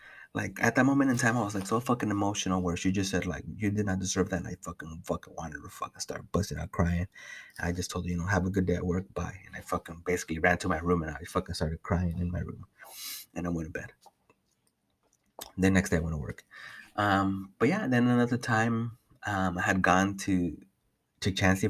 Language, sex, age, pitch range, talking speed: English, male, 30-49, 90-115 Hz, 245 wpm